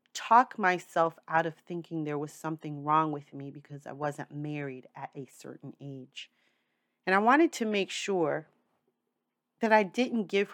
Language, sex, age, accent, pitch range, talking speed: English, female, 40-59, American, 155-225 Hz, 165 wpm